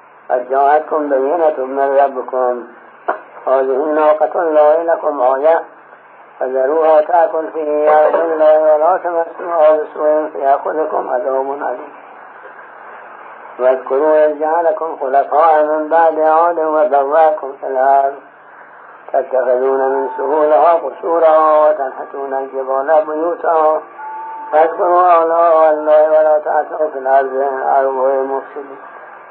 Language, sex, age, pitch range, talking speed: English, male, 50-69, 140-160 Hz, 45 wpm